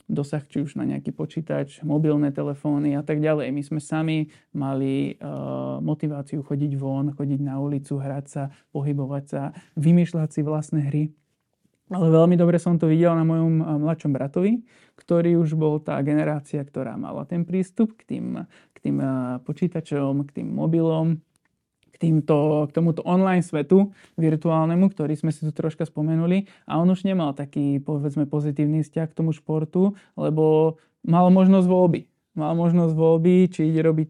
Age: 20-39